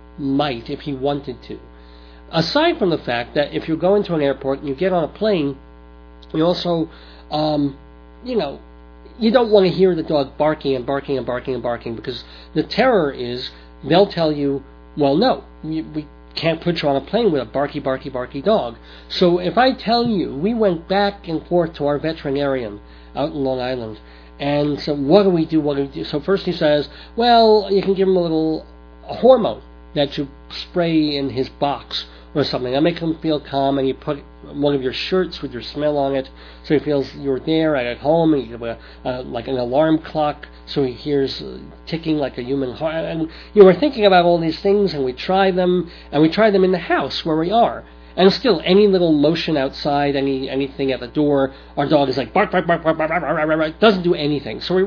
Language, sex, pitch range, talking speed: English, male, 130-170 Hz, 215 wpm